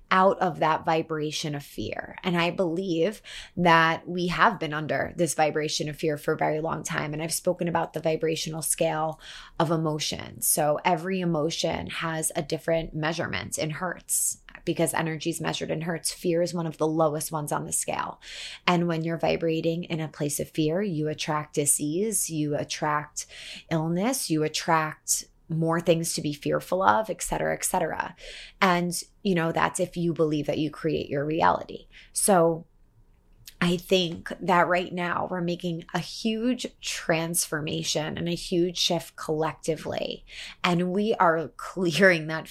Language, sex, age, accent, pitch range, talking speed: English, female, 20-39, American, 155-175 Hz, 165 wpm